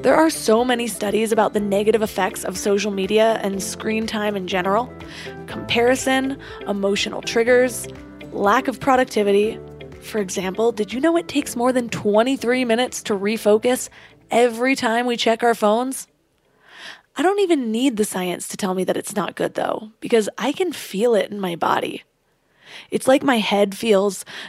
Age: 20-39